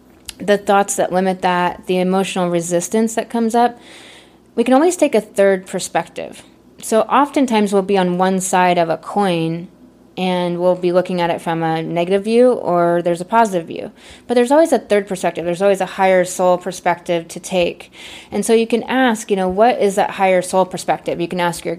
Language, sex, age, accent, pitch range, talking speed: English, female, 20-39, American, 180-215 Hz, 205 wpm